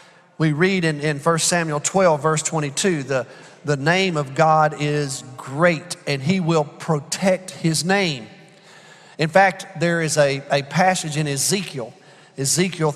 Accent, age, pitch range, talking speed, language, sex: American, 40-59, 150-180 Hz, 150 wpm, English, male